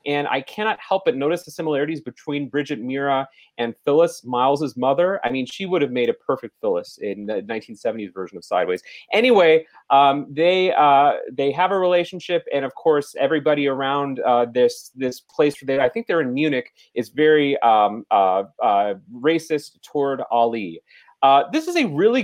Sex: male